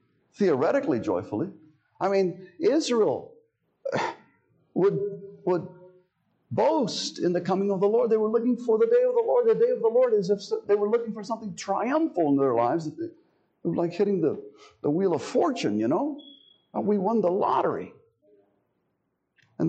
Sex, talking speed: male, 165 wpm